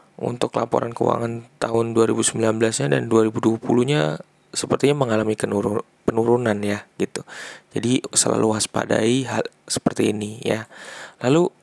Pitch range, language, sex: 110-125 Hz, Indonesian, male